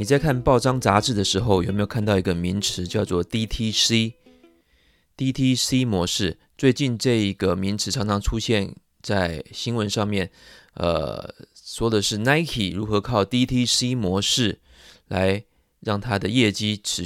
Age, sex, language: 20-39, male, Chinese